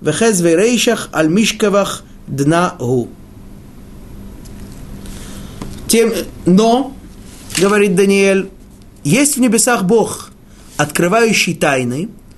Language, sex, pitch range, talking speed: Russian, male, 170-230 Hz, 70 wpm